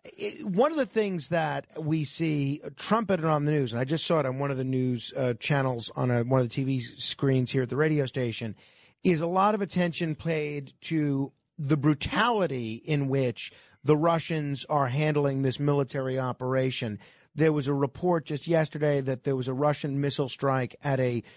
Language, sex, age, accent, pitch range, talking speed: English, male, 40-59, American, 135-170 Hz, 190 wpm